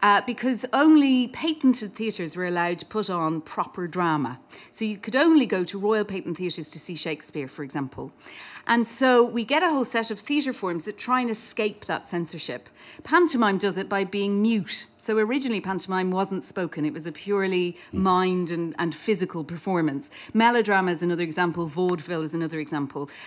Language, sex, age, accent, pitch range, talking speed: English, female, 40-59, British, 175-245 Hz, 180 wpm